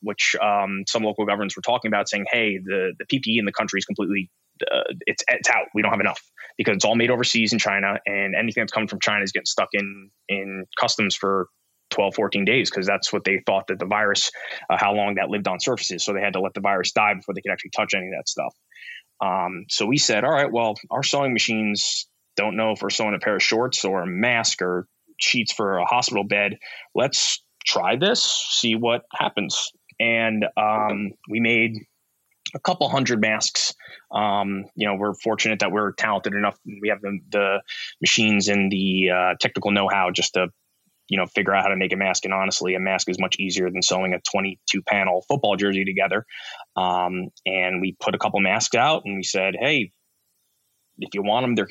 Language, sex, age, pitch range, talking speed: English, male, 20-39, 95-110 Hz, 215 wpm